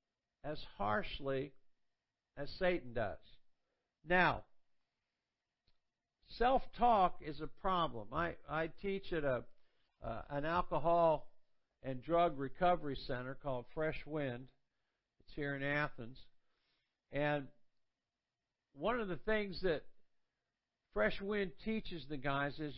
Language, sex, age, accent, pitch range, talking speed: English, male, 60-79, American, 150-195 Hz, 110 wpm